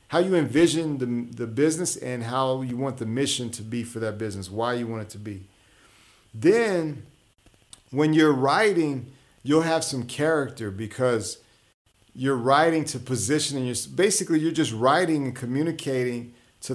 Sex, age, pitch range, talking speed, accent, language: male, 40-59, 115-150 Hz, 160 wpm, American, English